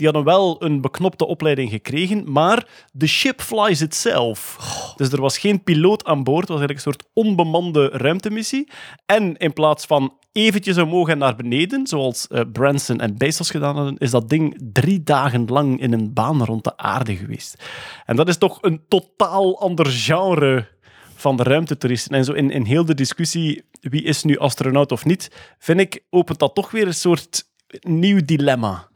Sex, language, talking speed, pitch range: male, Dutch, 180 wpm, 130-165 Hz